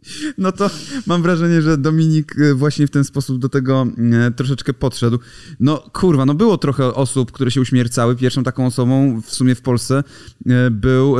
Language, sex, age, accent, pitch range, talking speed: Polish, male, 30-49, native, 120-155 Hz, 165 wpm